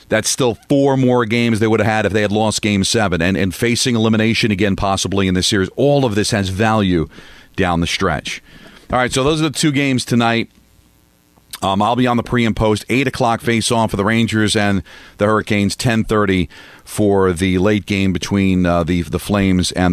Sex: male